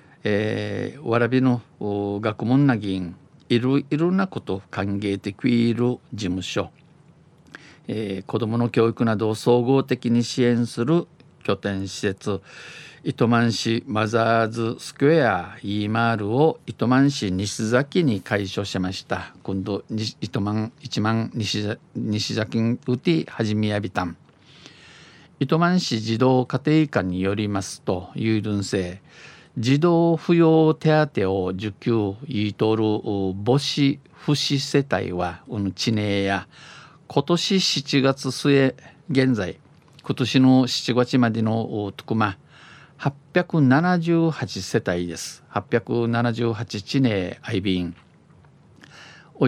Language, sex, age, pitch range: Japanese, male, 50-69, 105-140 Hz